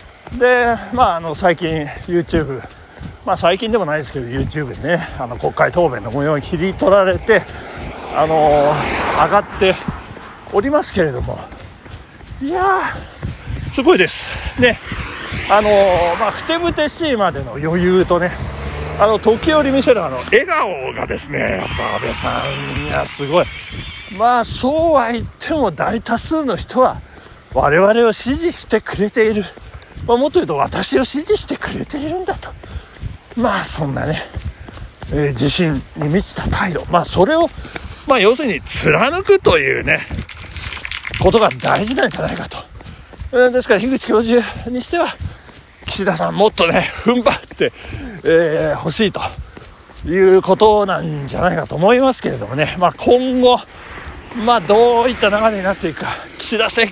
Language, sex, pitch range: Japanese, male, 170-255 Hz